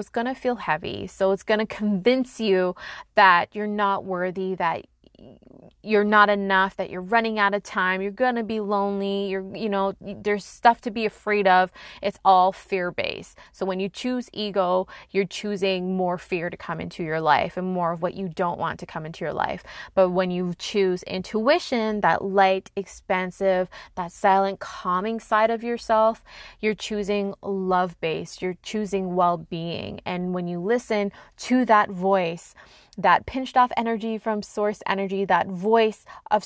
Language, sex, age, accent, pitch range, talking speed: English, female, 20-39, American, 185-215 Hz, 170 wpm